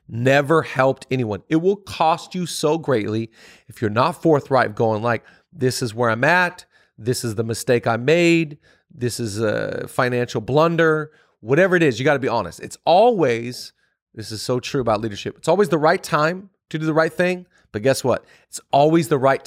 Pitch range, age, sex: 120-160 Hz, 40-59, male